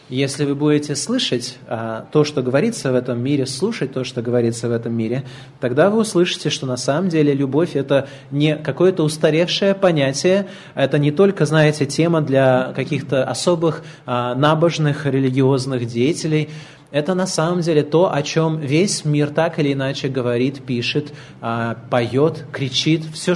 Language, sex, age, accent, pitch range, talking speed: Russian, male, 20-39, native, 125-150 Hz, 150 wpm